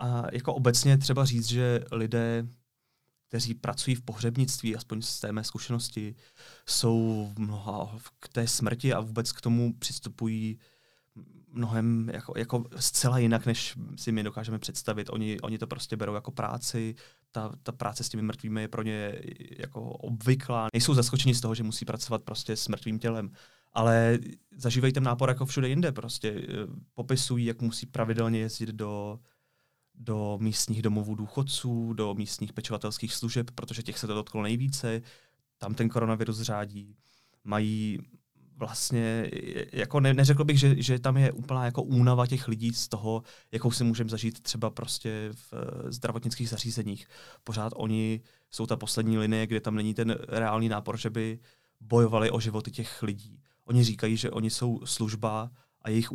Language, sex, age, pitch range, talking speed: Czech, male, 30-49, 110-120 Hz, 160 wpm